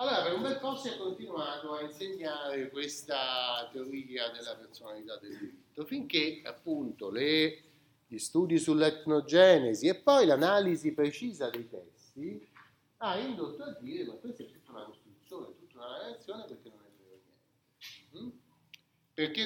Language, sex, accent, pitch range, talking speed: Italian, male, native, 140-220 Hz, 130 wpm